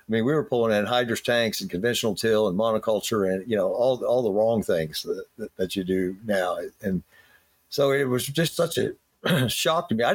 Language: English